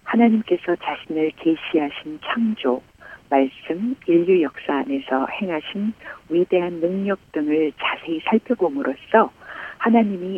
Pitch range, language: 155-215 Hz, Korean